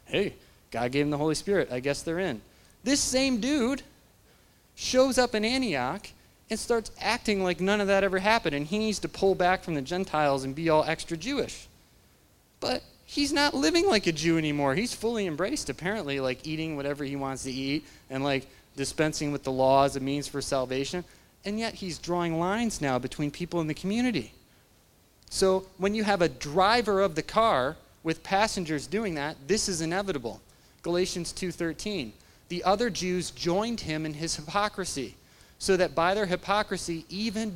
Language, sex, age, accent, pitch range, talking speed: English, male, 30-49, American, 150-210 Hz, 180 wpm